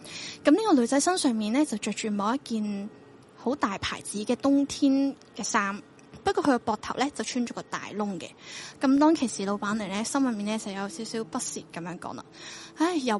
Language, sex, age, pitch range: Chinese, female, 10-29, 215-280 Hz